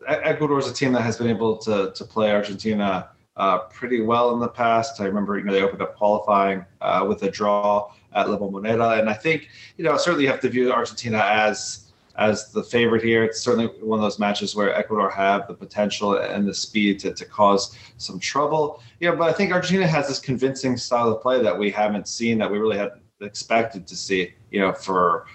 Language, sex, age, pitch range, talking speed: English, male, 30-49, 100-115 Hz, 225 wpm